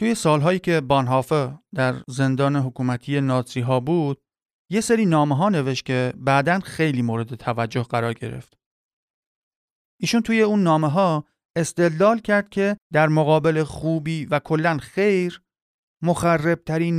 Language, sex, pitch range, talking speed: Persian, male, 140-185 Hz, 130 wpm